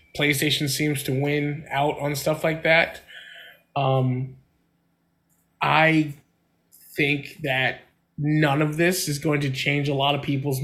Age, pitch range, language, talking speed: 20-39, 145-180 Hz, English, 135 wpm